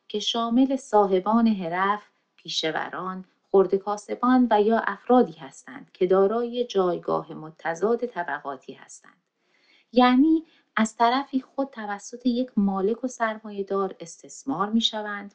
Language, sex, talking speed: Persian, female, 105 wpm